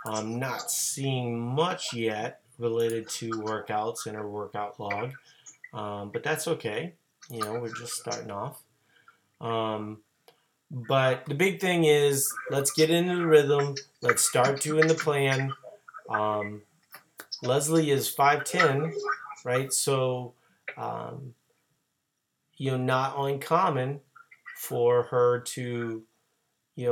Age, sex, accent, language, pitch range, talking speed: 30-49, male, American, English, 110-140 Hz, 120 wpm